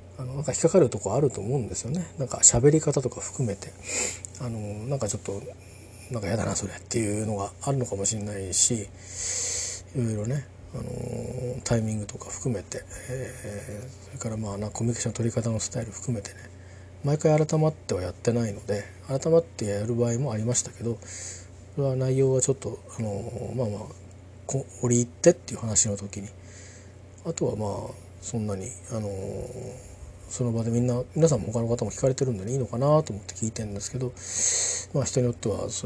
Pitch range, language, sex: 100-125 Hz, Japanese, male